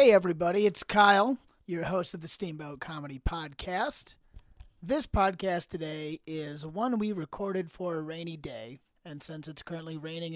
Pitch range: 155-195 Hz